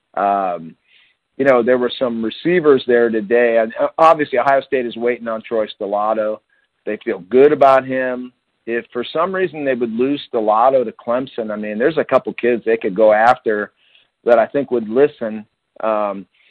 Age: 50-69